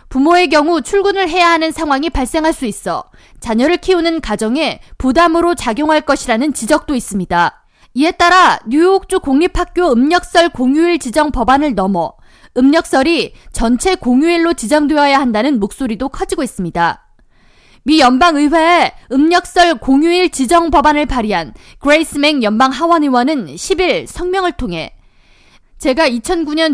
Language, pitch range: Korean, 245-335 Hz